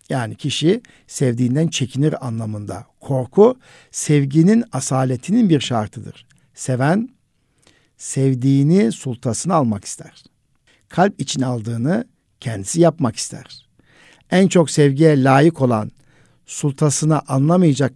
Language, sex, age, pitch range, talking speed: Turkish, male, 60-79, 125-165 Hz, 95 wpm